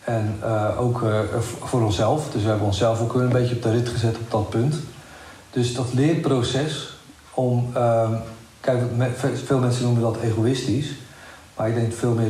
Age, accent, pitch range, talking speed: 50-69, Dutch, 110-130 Hz, 180 wpm